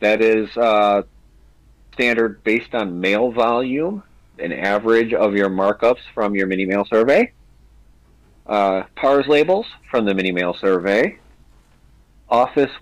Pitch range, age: 105-130 Hz, 40-59